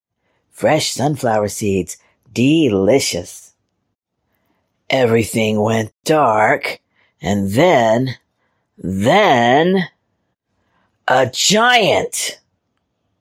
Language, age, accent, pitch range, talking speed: English, 40-59, American, 105-150 Hz, 55 wpm